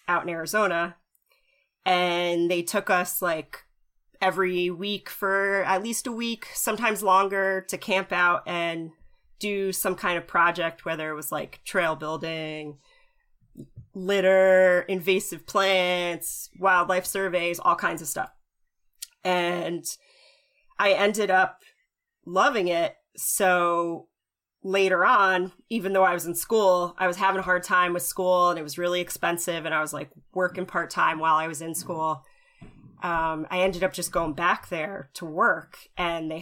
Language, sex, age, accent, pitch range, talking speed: English, female, 30-49, American, 170-195 Hz, 155 wpm